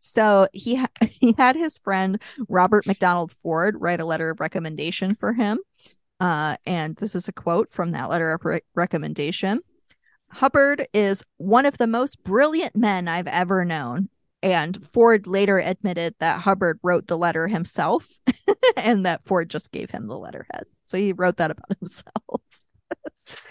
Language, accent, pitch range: English, American, 175-225 Hz